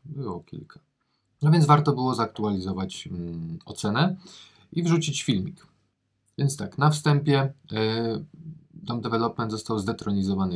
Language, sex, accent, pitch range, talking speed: Polish, male, native, 95-115 Hz, 120 wpm